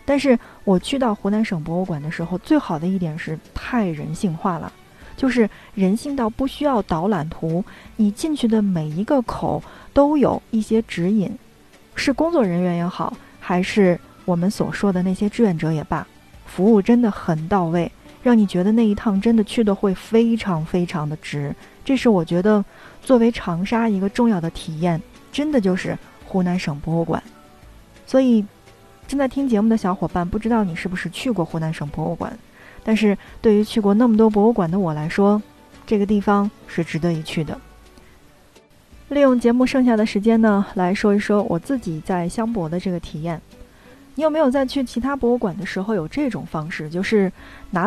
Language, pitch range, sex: Chinese, 170-230 Hz, female